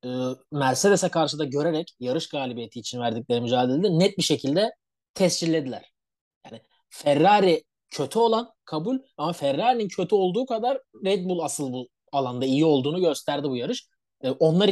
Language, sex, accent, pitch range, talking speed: Turkish, male, native, 135-185 Hz, 140 wpm